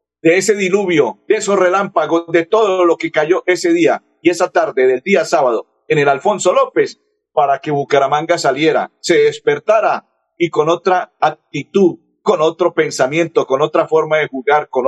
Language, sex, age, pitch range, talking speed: Spanish, male, 50-69, 145-230 Hz, 170 wpm